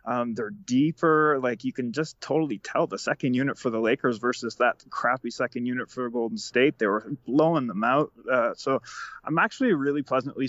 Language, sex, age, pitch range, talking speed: English, male, 20-39, 115-140 Hz, 195 wpm